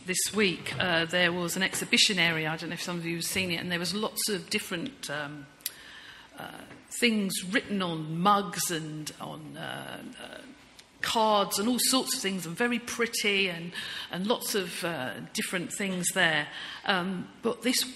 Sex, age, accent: female, 50-69, British